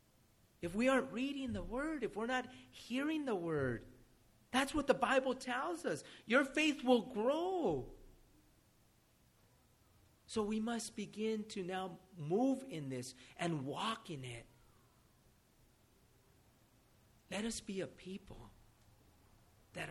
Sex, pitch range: male, 110-170 Hz